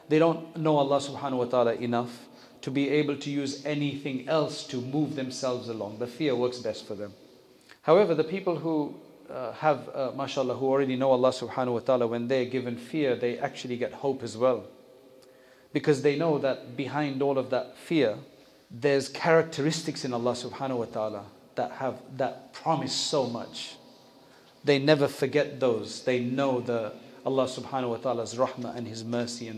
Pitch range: 125-145 Hz